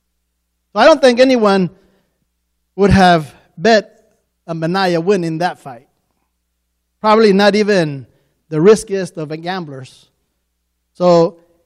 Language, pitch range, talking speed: English, 135-225 Hz, 115 wpm